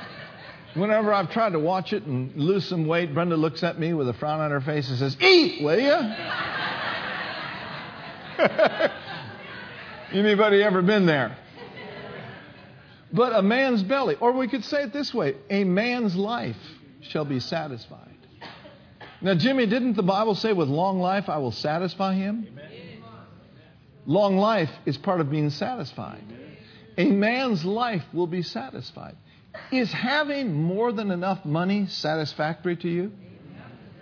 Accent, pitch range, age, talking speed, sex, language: American, 155-215 Hz, 50-69, 145 wpm, male, English